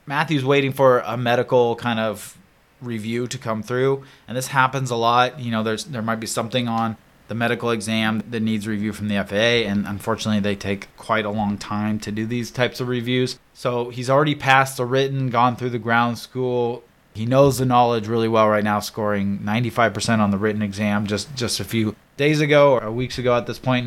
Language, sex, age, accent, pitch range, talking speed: English, male, 20-39, American, 110-130 Hz, 210 wpm